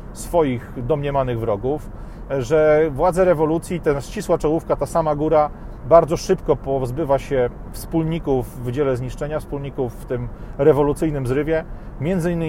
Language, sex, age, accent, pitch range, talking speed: Polish, male, 40-59, native, 120-145 Hz, 125 wpm